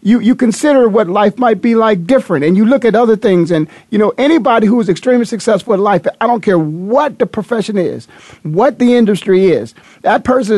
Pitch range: 185-250 Hz